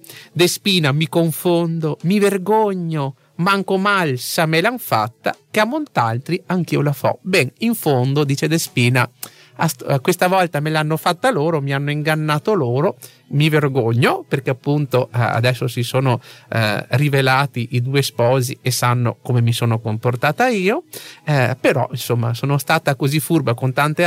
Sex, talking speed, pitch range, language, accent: male, 155 wpm, 140-195 Hz, Italian, native